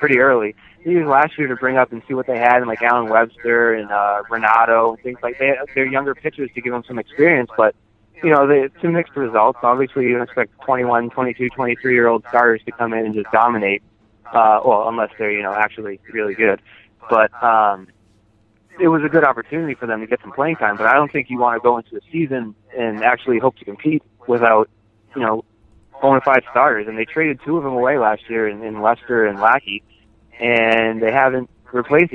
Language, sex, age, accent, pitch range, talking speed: English, male, 20-39, American, 110-130 Hz, 215 wpm